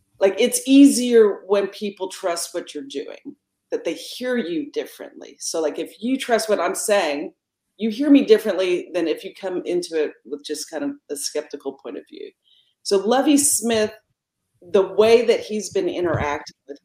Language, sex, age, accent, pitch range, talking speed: English, female, 40-59, American, 150-230 Hz, 180 wpm